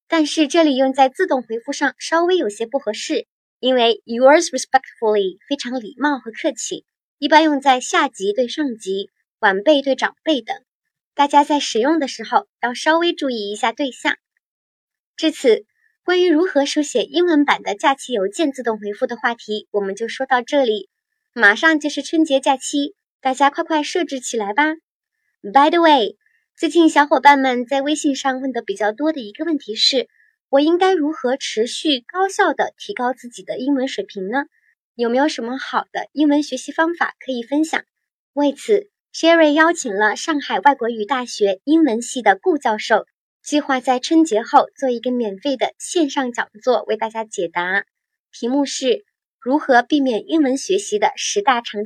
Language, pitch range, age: Chinese, 245-325 Hz, 20-39